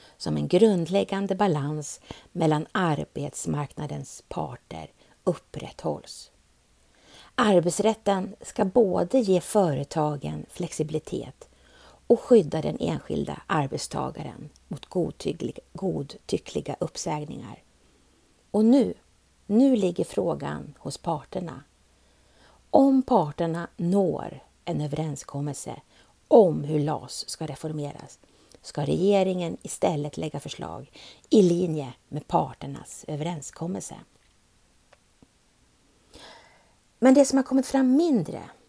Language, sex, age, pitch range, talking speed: Swedish, female, 50-69, 145-200 Hz, 85 wpm